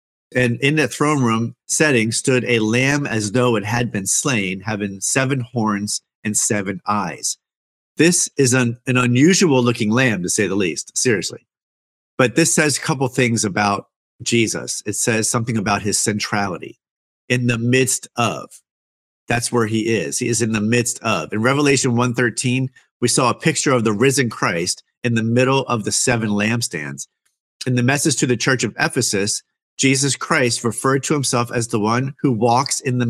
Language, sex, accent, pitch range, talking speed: English, male, American, 110-130 Hz, 180 wpm